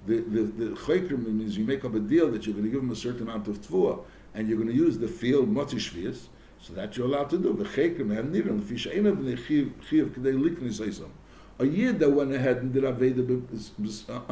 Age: 60-79